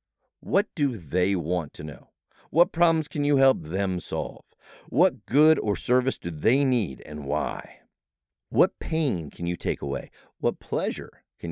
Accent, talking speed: American, 160 wpm